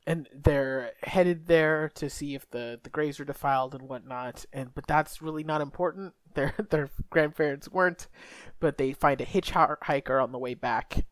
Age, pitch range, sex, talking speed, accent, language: 20-39, 125-155 Hz, male, 180 wpm, American, English